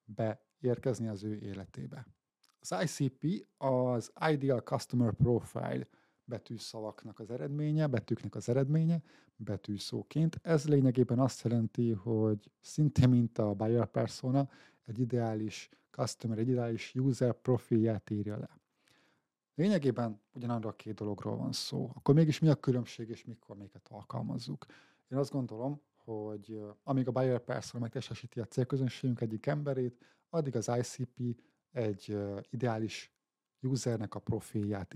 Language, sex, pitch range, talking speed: Hungarian, male, 110-130 Hz, 125 wpm